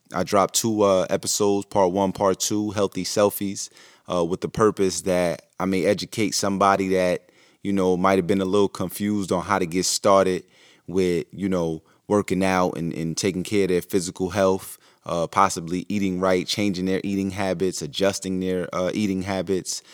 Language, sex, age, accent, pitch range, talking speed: English, male, 30-49, American, 85-100 Hz, 180 wpm